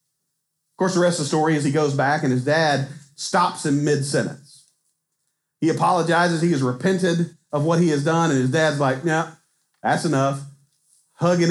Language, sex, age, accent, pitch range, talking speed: English, male, 40-59, American, 145-175 Hz, 180 wpm